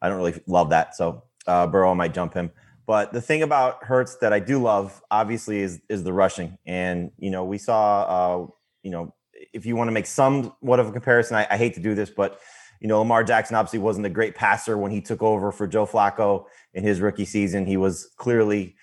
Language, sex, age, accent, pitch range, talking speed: English, male, 30-49, American, 90-110 Hz, 235 wpm